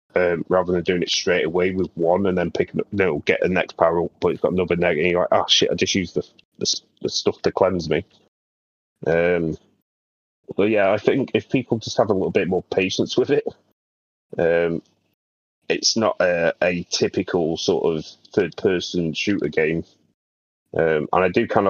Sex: male